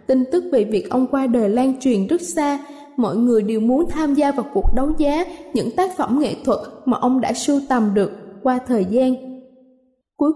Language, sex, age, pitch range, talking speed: Vietnamese, female, 10-29, 235-295 Hz, 210 wpm